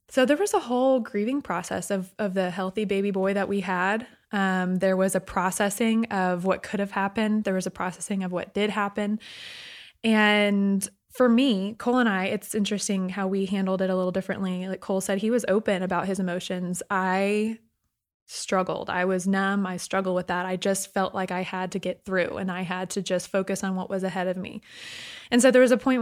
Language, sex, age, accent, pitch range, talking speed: English, female, 20-39, American, 185-210 Hz, 215 wpm